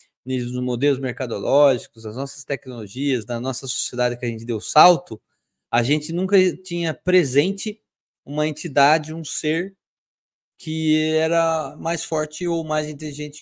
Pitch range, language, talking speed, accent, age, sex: 140-190 Hz, Portuguese, 135 wpm, Brazilian, 20-39, male